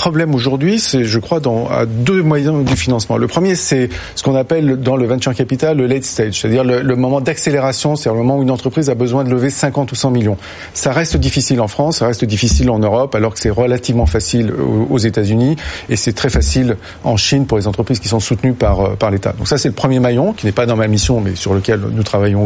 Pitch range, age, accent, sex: 115-150 Hz, 40-59, French, male